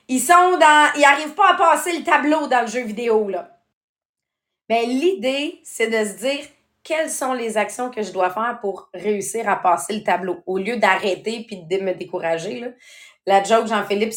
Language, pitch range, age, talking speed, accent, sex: English, 205-290 Hz, 30-49, 195 wpm, Canadian, female